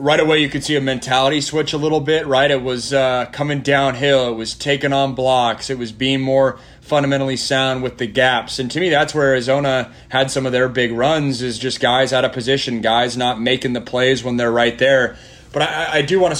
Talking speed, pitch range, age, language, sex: 235 wpm, 130-155 Hz, 20-39, English, male